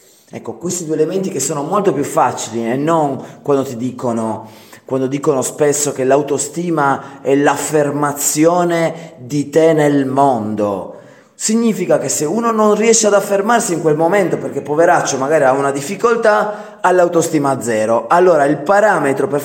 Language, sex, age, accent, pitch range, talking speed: Italian, male, 30-49, native, 120-165 Hz, 155 wpm